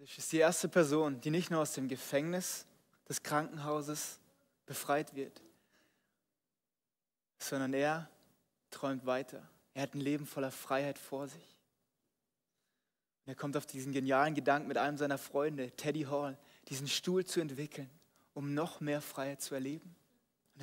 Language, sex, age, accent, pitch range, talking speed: German, male, 20-39, German, 140-170 Hz, 145 wpm